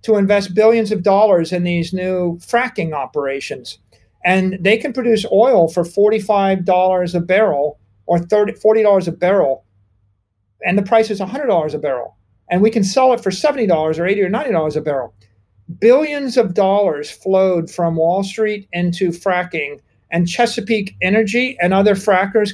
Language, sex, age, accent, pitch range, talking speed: English, male, 50-69, American, 160-205 Hz, 155 wpm